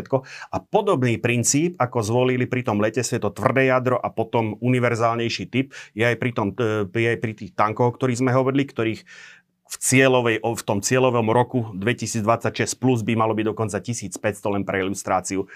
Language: Slovak